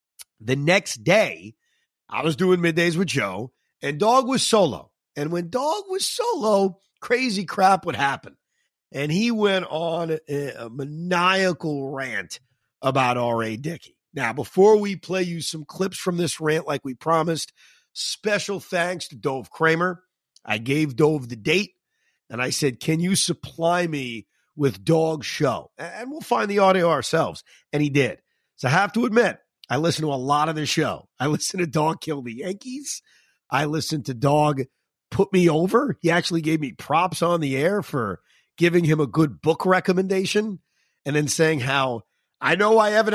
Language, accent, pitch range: English, American, 145-195 Hz